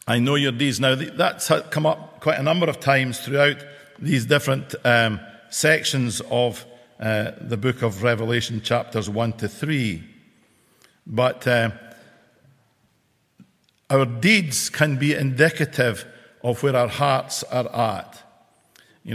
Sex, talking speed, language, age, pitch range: male, 130 wpm, English, 50-69, 120-150 Hz